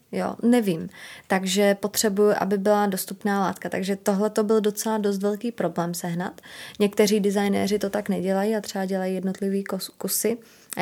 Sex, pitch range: female, 190-205 Hz